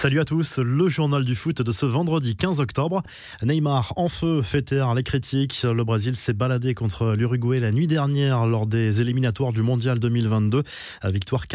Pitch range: 110-135 Hz